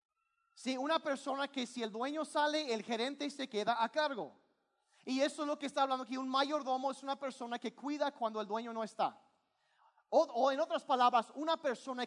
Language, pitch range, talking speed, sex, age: Spanish, 225-295 Hz, 205 wpm, male, 40-59